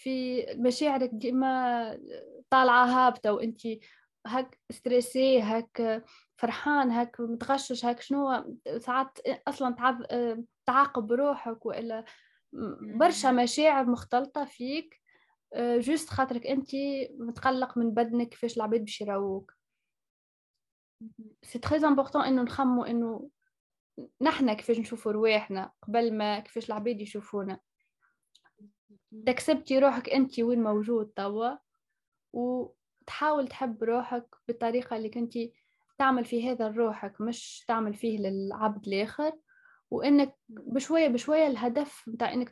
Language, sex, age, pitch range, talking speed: Arabic, female, 10-29, 225-270 Hz, 110 wpm